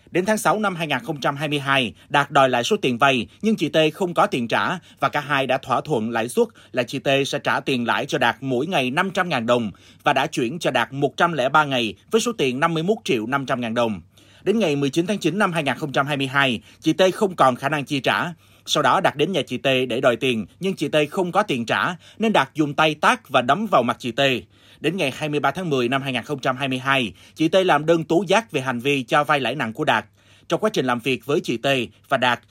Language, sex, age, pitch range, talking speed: Vietnamese, male, 30-49, 125-170 Hz, 235 wpm